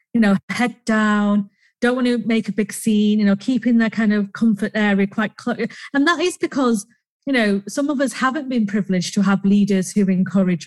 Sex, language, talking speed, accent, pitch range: female, English, 215 wpm, British, 195-225 Hz